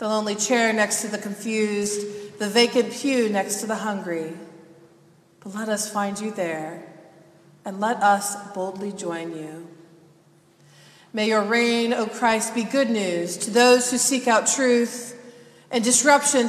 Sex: female